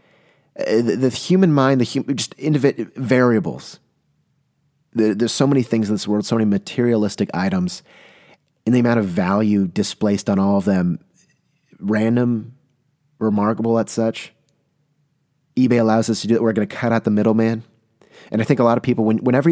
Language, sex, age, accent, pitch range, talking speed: English, male, 30-49, American, 105-130 Hz, 170 wpm